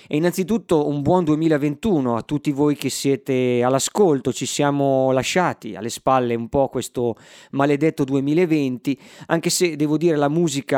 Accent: native